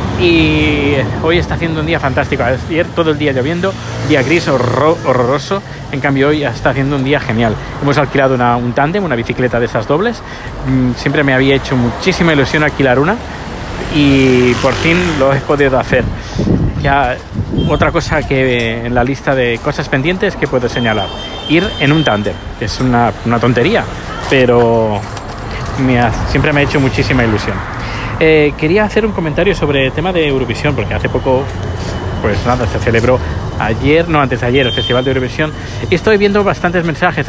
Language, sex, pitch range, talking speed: Spanish, male, 110-145 Hz, 180 wpm